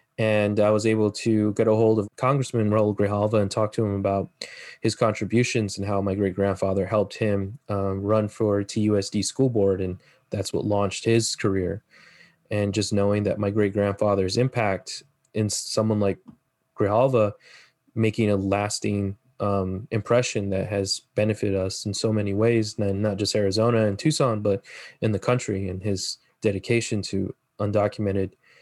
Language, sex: English, male